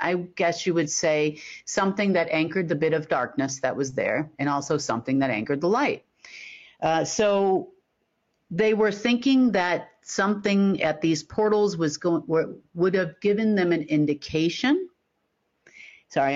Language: English